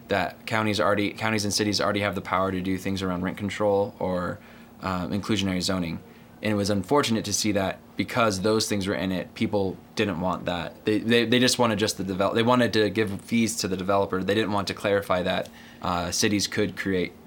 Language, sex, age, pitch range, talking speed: English, male, 20-39, 100-115 Hz, 220 wpm